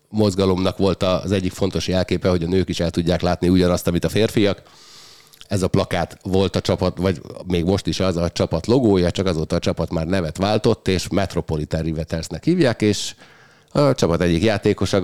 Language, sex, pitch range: Hungarian, male, 85-100 Hz